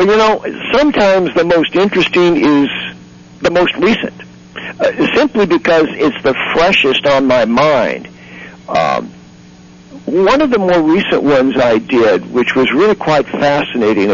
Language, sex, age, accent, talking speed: English, male, 60-79, American, 140 wpm